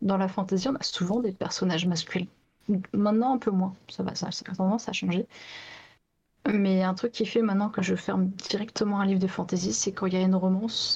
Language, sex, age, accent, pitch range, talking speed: French, female, 30-49, French, 185-210 Hz, 225 wpm